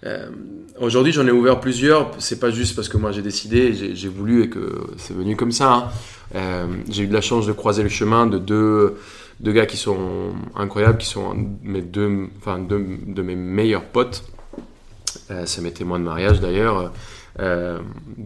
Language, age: French, 20-39